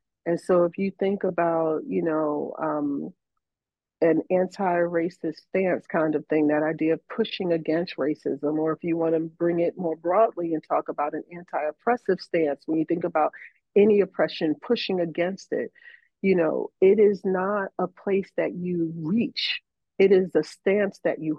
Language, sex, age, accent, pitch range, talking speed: English, female, 40-59, American, 160-195 Hz, 165 wpm